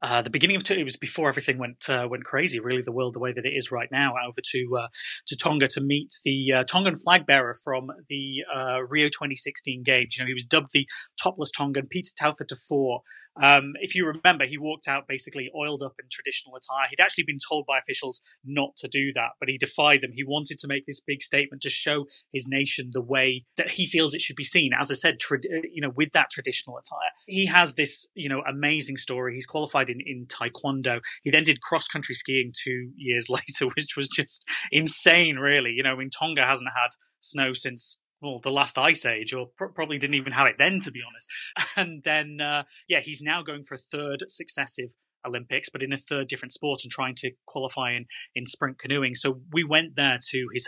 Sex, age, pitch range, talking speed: male, 30-49, 130-150 Hz, 225 wpm